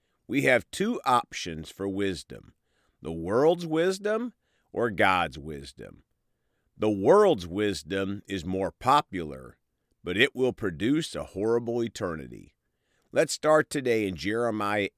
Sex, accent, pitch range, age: male, American, 95-125 Hz, 50-69